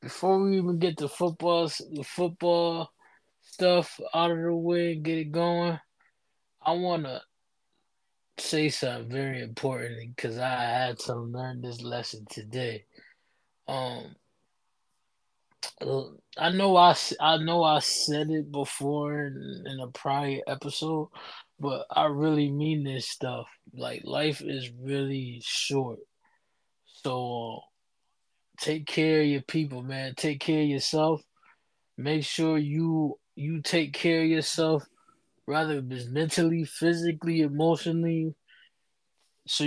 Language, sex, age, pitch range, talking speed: English, male, 20-39, 130-160 Hz, 125 wpm